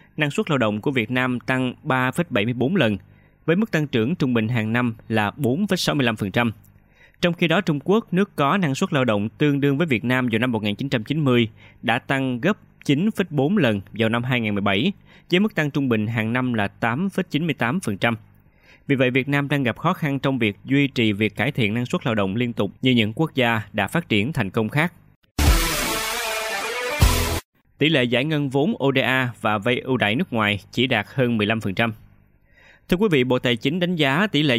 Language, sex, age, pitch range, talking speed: Vietnamese, male, 20-39, 110-145 Hz, 195 wpm